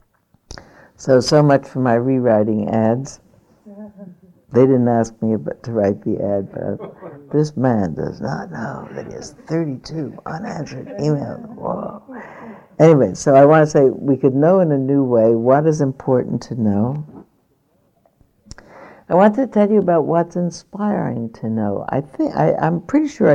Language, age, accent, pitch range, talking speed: English, 60-79, American, 115-155 Hz, 155 wpm